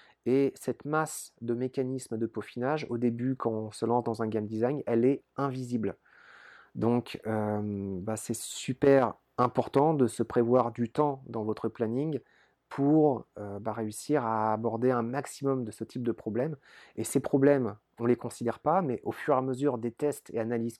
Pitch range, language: 115-140 Hz, French